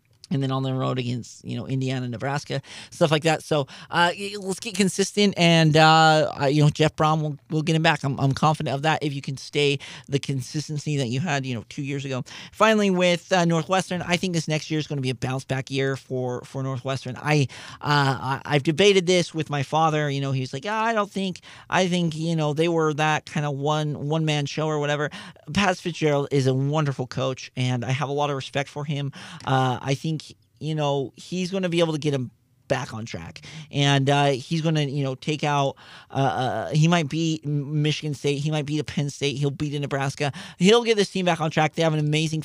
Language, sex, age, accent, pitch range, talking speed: English, male, 40-59, American, 135-170 Hz, 235 wpm